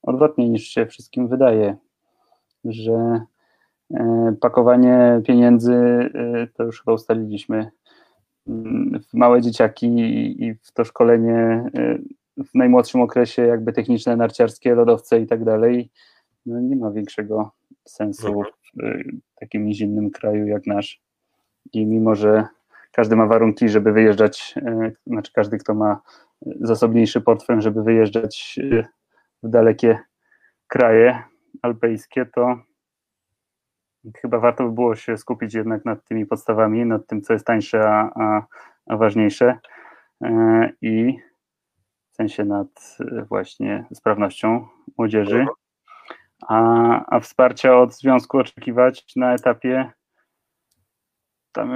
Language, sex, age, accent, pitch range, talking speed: Polish, male, 20-39, native, 110-125 Hz, 120 wpm